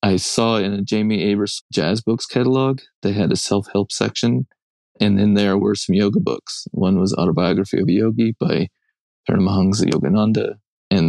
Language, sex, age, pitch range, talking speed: English, male, 20-39, 95-115 Hz, 170 wpm